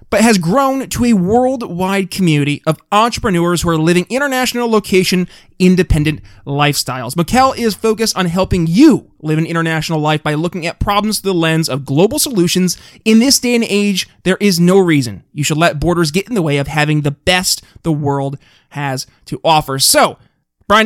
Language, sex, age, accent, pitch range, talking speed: English, male, 20-39, American, 150-200 Hz, 180 wpm